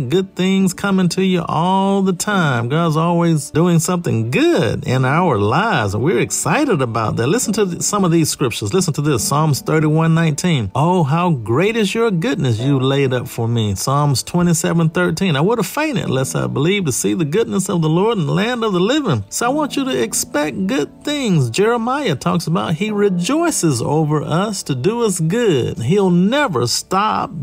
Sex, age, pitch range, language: male, 50-69, 145-200 Hz, English